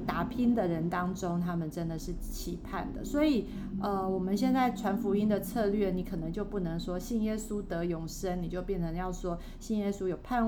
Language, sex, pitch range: Chinese, female, 175-215 Hz